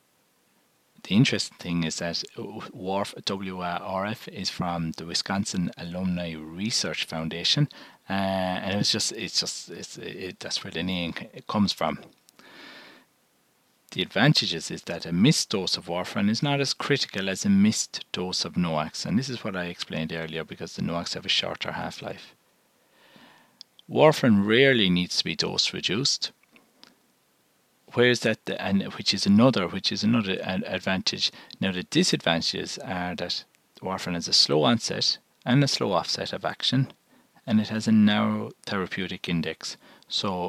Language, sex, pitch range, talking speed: English, male, 85-110 Hz, 155 wpm